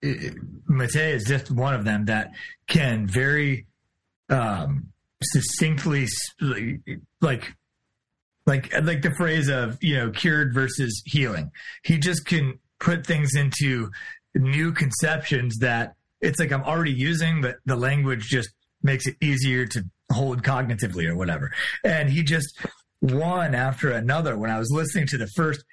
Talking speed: 140 wpm